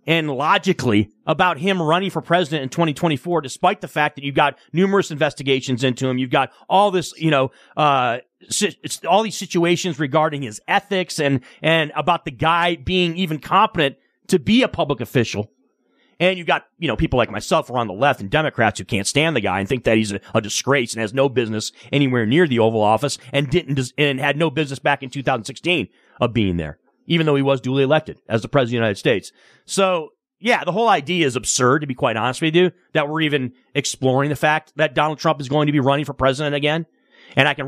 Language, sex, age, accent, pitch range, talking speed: English, male, 40-59, American, 130-165 Hz, 220 wpm